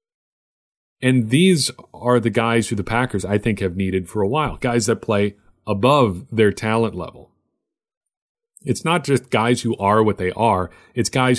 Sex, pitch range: male, 100-120 Hz